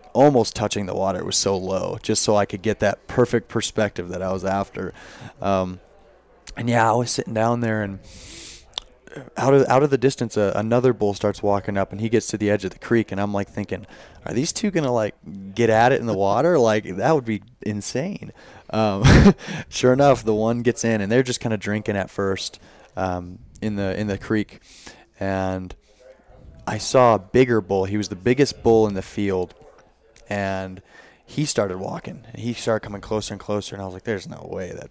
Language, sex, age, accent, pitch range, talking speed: English, male, 20-39, American, 100-120 Hz, 215 wpm